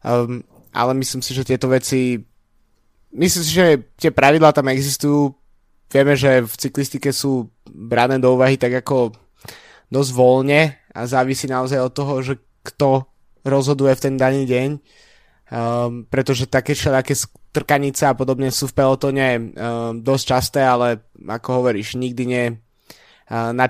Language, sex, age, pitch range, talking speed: Slovak, male, 20-39, 120-135 Hz, 145 wpm